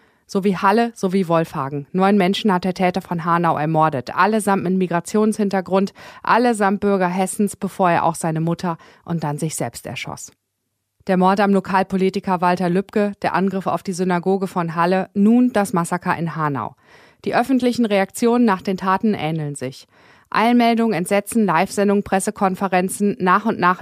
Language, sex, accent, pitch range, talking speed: German, female, German, 175-200 Hz, 160 wpm